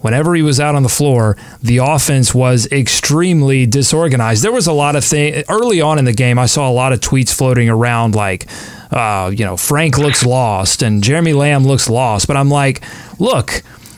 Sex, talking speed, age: male, 200 wpm, 30-49